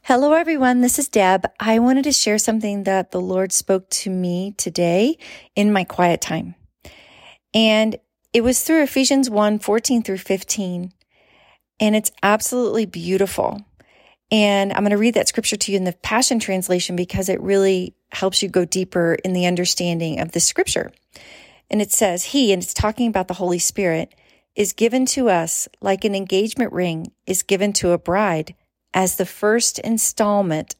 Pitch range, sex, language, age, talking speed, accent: 180-220 Hz, female, English, 40-59, 170 wpm, American